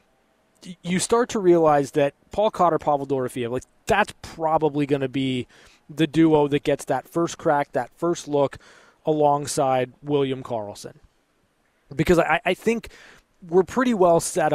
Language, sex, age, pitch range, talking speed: English, male, 20-39, 130-160 Hz, 145 wpm